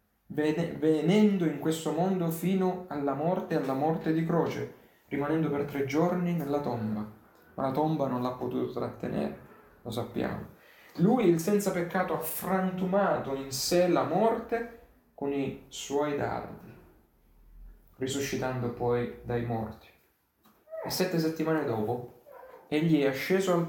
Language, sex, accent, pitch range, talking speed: Italian, male, native, 135-180 Hz, 130 wpm